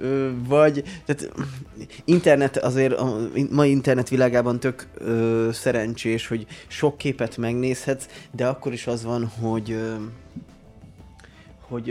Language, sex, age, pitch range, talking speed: Hungarian, male, 20-39, 110-125 Hz, 120 wpm